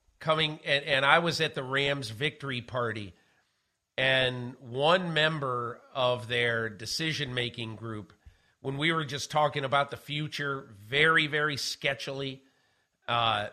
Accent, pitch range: American, 125-155 Hz